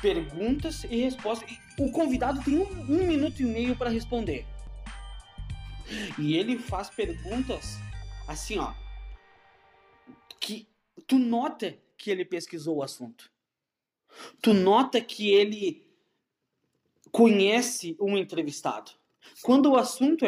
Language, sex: Portuguese, male